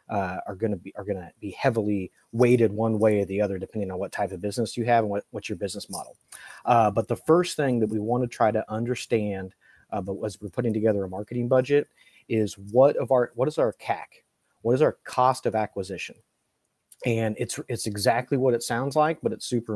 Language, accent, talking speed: English, American, 220 wpm